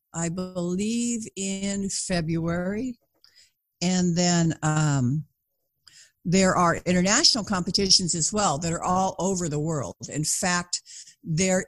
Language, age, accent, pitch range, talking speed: English, 60-79, American, 160-205 Hz, 115 wpm